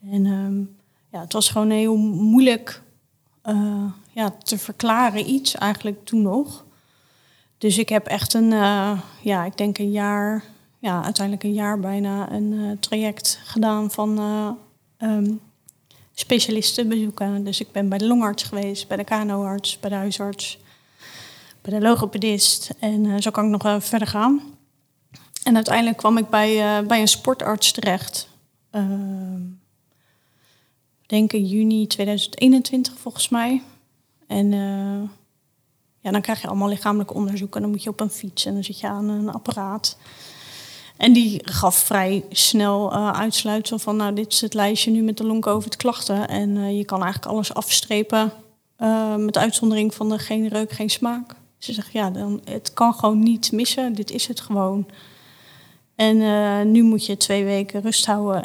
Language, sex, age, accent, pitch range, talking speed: Dutch, female, 30-49, Dutch, 195-220 Hz, 160 wpm